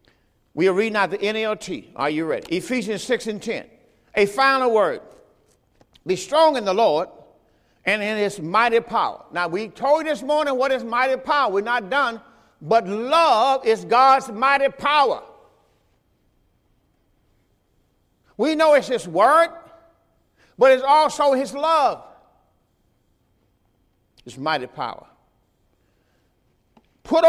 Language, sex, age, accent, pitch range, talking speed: English, male, 50-69, American, 225-295 Hz, 130 wpm